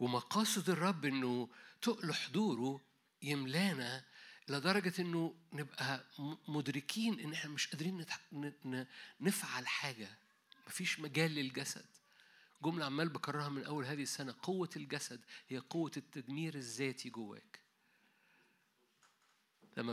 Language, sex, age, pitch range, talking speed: Arabic, male, 50-69, 140-180 Hz, 100 wpm